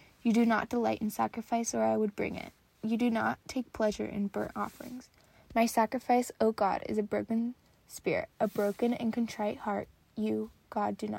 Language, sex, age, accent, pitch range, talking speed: English, female, 10-29, American, 215-240 Hz, 180 wpm